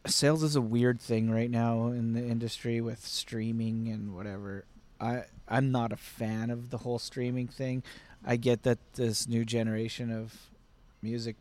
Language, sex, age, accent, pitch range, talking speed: English, male, 30-49, American, 115-130 Hz, 170 wpm